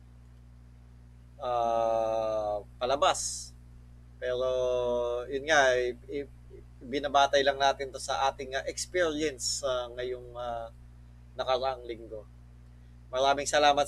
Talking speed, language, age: 95 wpm, Filipino, 20-39